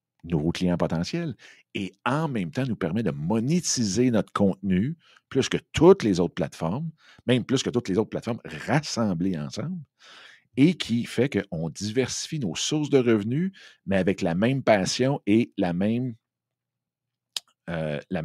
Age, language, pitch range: 50-69, French, 95-125 Hz